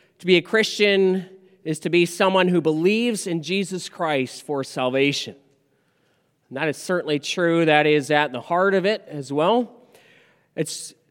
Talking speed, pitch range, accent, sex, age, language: 160 wpm, 145-185 Hz, American, male, 30-49, English